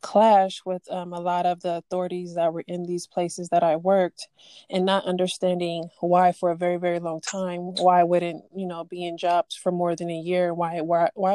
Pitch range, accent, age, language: 175-190 Hz, American, 20-39, English